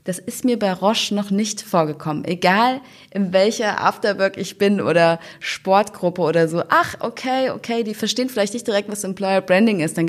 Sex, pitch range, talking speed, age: female, 155-195 Hz, 185 wpm, 20-39